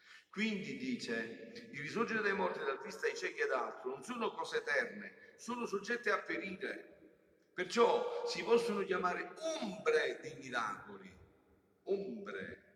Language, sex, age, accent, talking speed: Italian, male, 50-69, native, 130 wpm